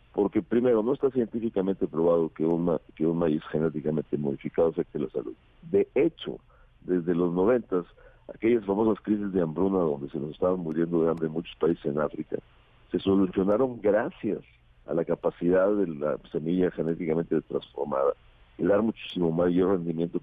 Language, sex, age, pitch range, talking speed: Spanish, male, 50-69, 80-105 Hz, 160 wpm